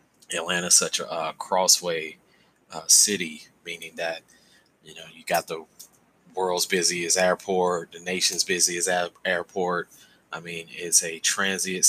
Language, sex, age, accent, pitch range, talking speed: English, male, 20-39, American, 90-105 Hz, 135 wpm